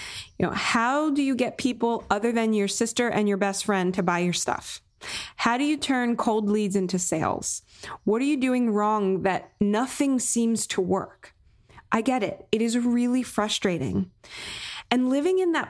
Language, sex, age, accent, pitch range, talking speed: English, female, 20-39, American, 200-250 Hz, 180 wpm